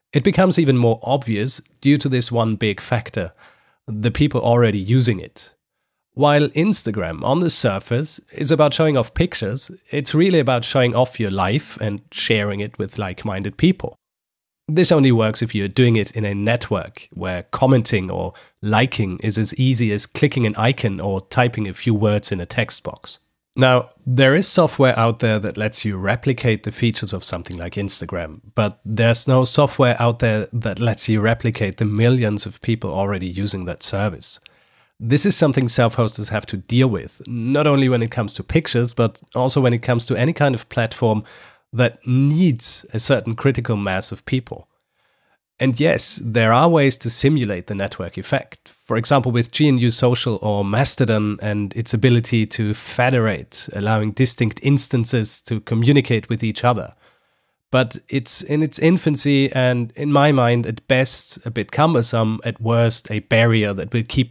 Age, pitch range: 30-49, 105-130 Hz